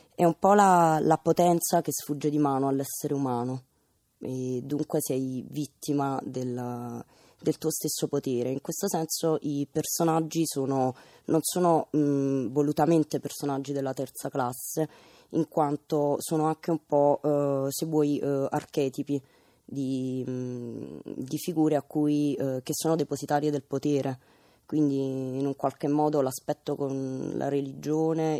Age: 20-39